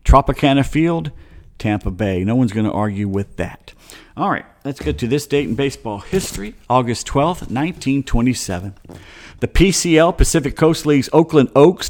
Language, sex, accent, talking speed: English, male, American, 155 wpm